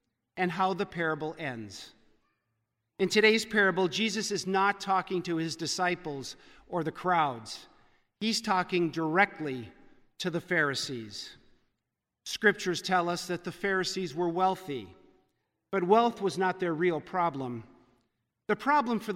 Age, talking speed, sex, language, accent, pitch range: 50-69, 130 wpm, male, English, American, 160-200 Hz